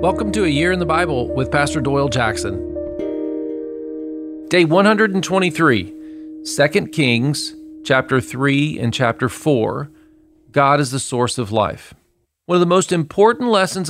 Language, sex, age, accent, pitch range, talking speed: English, male, 40-59, American, 110-155 Hz, 140 wpm